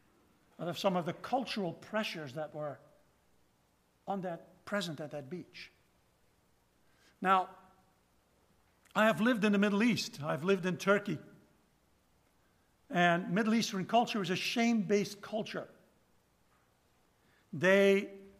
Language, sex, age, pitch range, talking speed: English, male, 60-79, 165-220 Hz, 115 wpm